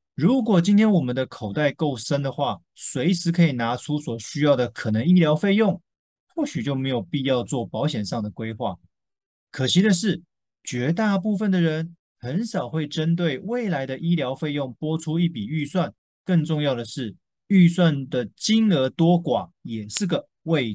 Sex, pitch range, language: male, 130-190 Hz, Chinese